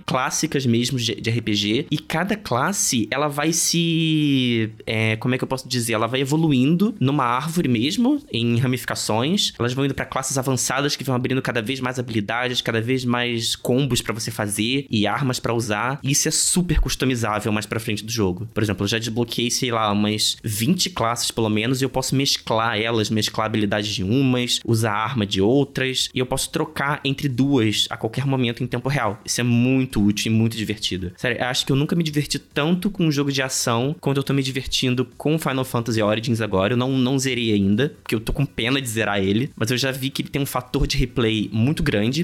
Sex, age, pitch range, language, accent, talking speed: male, 20-39, 110-140 Hz, Portuguese, Brazilian, 215 wpm